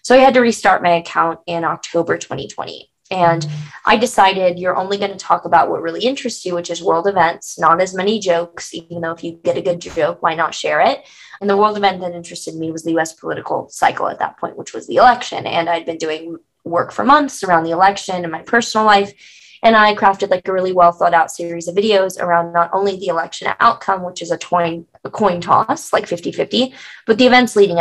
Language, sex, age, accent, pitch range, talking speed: English, female, 20-39, American, 170-200 Hz, 225 wpm